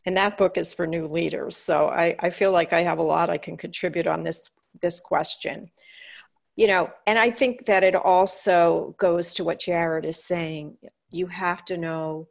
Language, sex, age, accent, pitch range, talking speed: English, female, 40-59, American, 165-195 Hz, 200 wpm